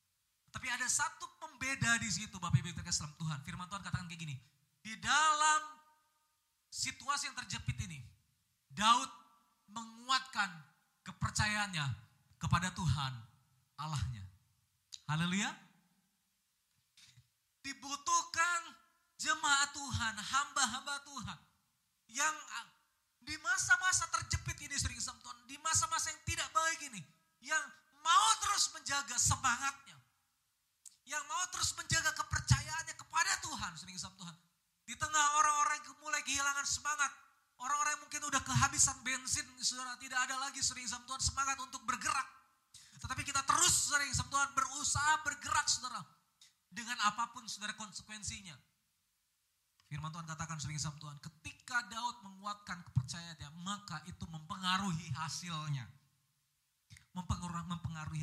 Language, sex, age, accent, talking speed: Indonesian, male, 30-49, native, 110 wpm